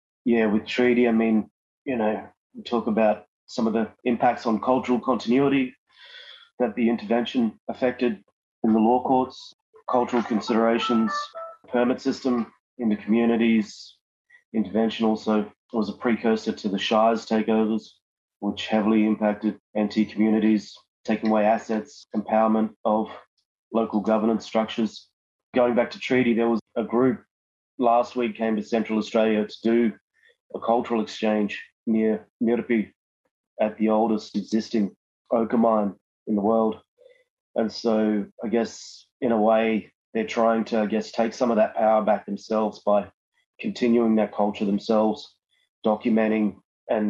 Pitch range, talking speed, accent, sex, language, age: 105-115 Hz, 140 wpm, Australian, male, English, 30-49